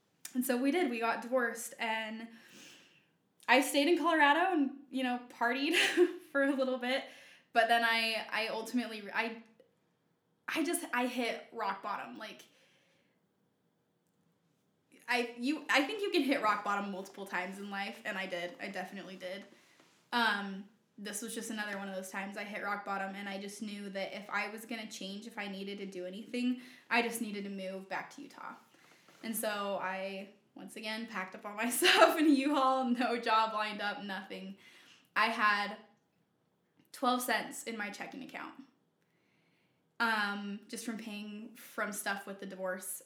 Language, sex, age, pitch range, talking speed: English, female, 10-29, 200-240 Hz, 175 wpm